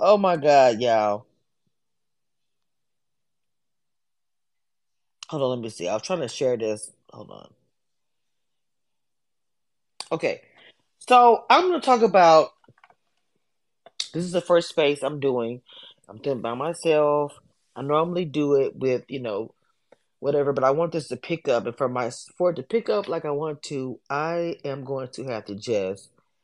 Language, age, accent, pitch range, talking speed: English, 20-39, American, 125-170 Hz, 160 wpm